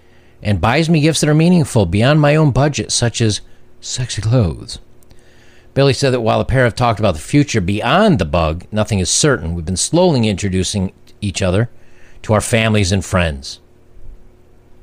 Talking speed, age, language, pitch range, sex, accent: 175 wpm, 50-69, English, 90-120 Hz, male, American